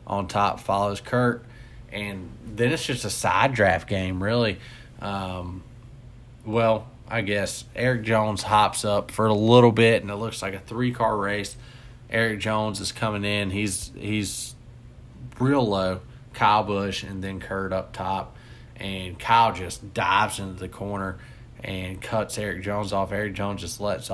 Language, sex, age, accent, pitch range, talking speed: English, male, 20-39, American, 100-120 Hz, 160 wpm